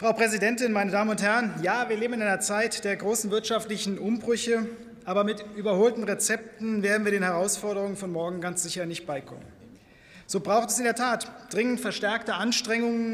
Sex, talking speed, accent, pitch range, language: male, 180 wpm, German, 210-250 Hz, German